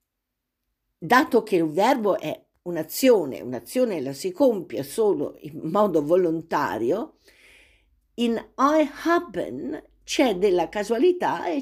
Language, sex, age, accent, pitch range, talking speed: Italian, female, 50-69, native, 155-245 Hz, 110 wpm